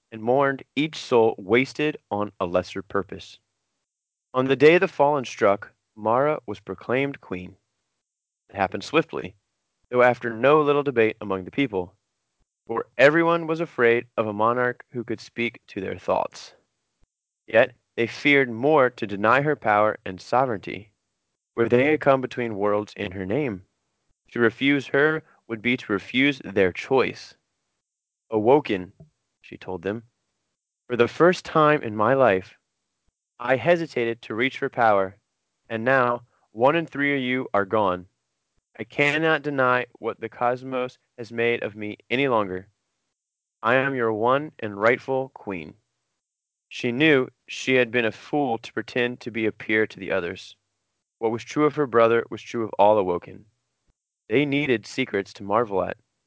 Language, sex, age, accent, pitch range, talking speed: English, male, 20-39, American, 105-135 Hz, 160 wpm